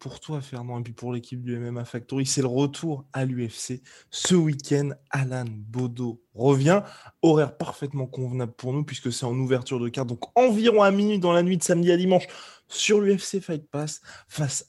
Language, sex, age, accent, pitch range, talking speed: French, male, 20-39, French, 130-175 Hz, 190 wpm